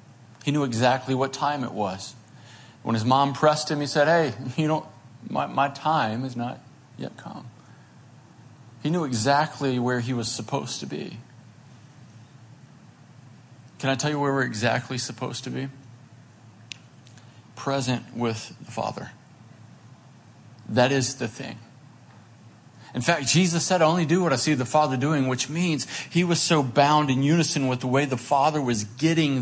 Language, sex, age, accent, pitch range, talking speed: English, male, 40-59, American, 120-145 Hz, 160 wpm